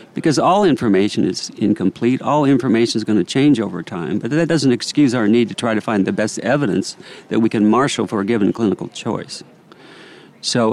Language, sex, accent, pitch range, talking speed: English, male, American, 105-125 Hz, 200 wpm